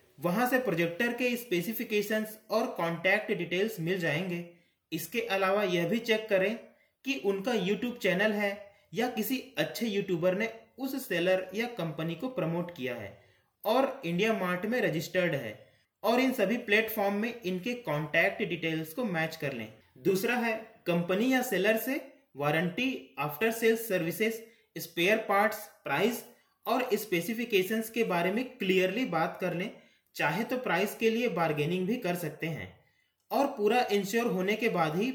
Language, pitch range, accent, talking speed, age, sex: Hindi, 175-230 Hz, native, 155 wpm, 30-49, male